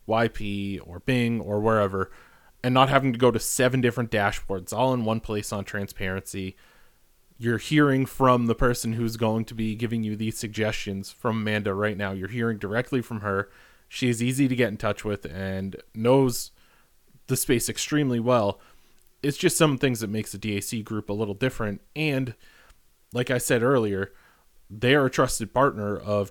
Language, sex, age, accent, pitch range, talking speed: English, male, 30-49, American, 105-120 Hz, 180 wpm